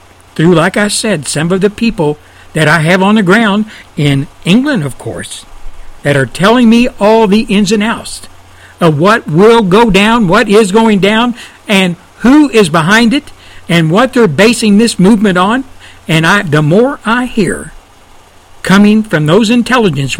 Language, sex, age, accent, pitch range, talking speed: English, male, 60-79, American, 130-215 Hz, 170 wpm